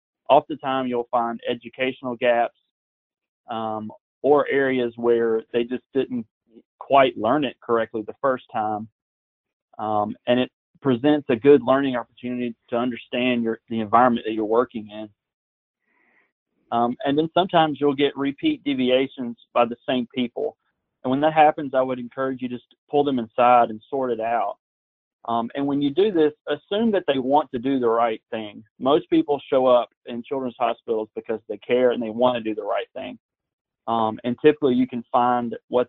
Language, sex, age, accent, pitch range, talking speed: English, male, 30-49, American, 115-135 Hz, 170 wpm